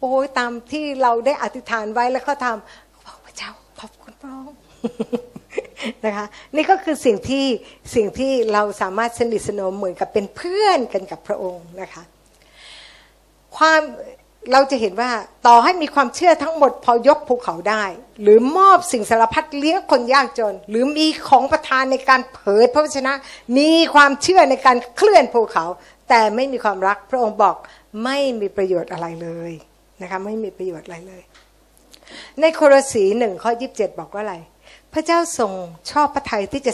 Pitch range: 200-275 Hz